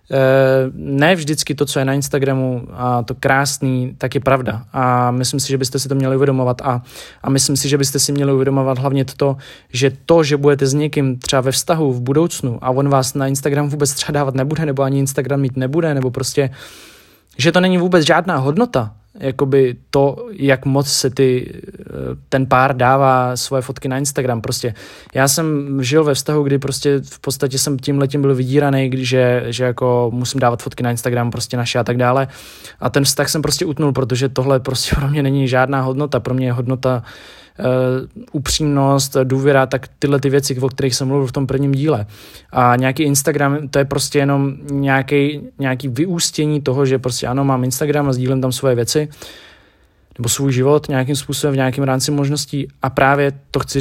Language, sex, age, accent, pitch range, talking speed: Czech, male, 20-39, native, 130-140 Hz, 195 wpm